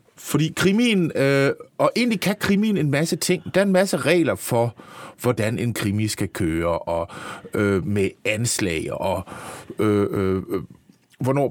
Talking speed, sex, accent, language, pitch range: 150 wpm, male, native, Danish, 110-160 Hz